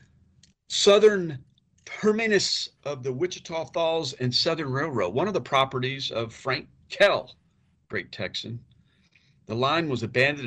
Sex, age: male, 50-69